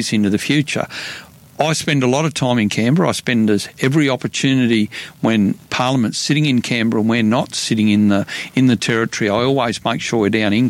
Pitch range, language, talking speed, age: 110-140 Hz, English, 210 wpm, 50-69